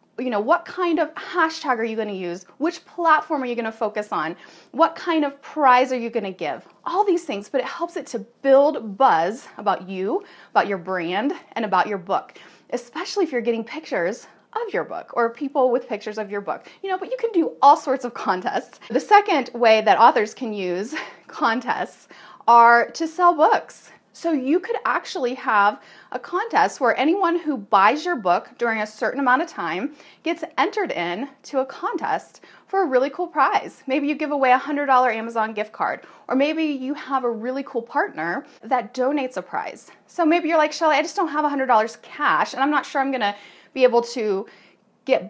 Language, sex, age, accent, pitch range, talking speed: English, female, 30-49, American, 225-320 Hz, 205 wpm